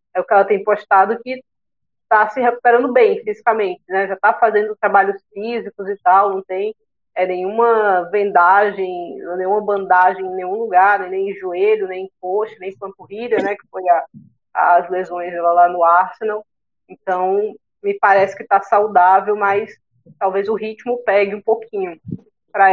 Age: 20-39